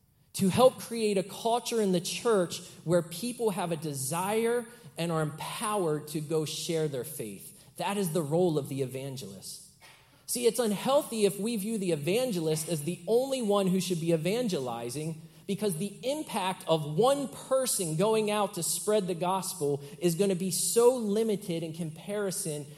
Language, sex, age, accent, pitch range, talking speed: English, male, 30-49, American, 155-215 Hz, 170 wpm